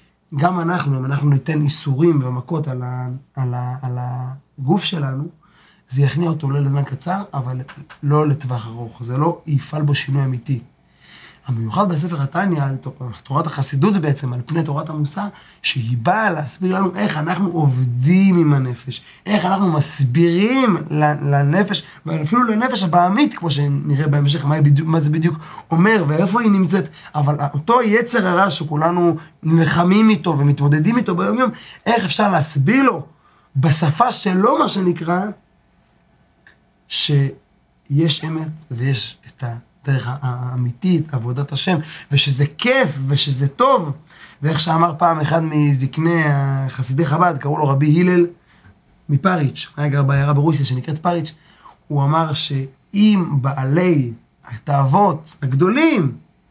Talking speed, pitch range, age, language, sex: 130 wpm, 140-175 Hz, 20-39, Hebrew, male